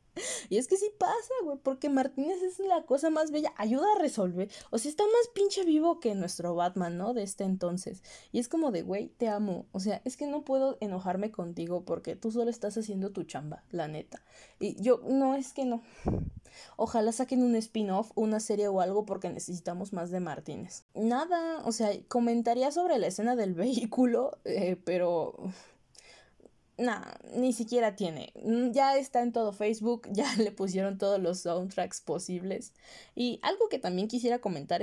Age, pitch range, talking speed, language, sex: 20-39, 185-245 Hz, 180 wpm, Spanish, female